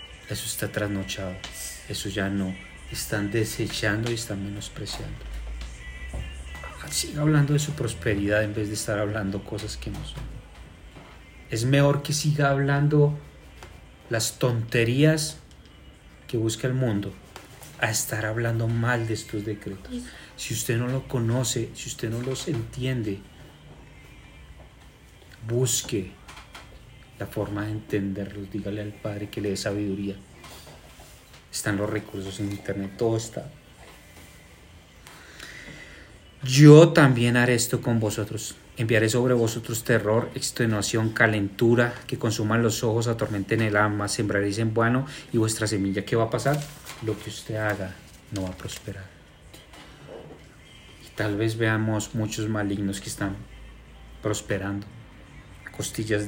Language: Spanish